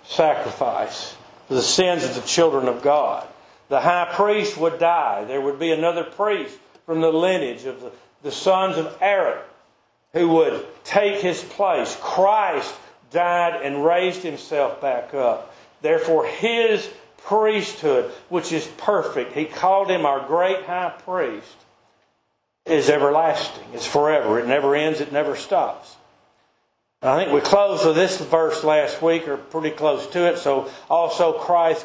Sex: male